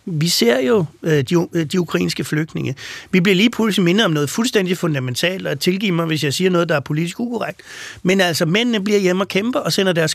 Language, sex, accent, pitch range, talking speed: Danish, male, native, 155-195 Hz, 230 wpm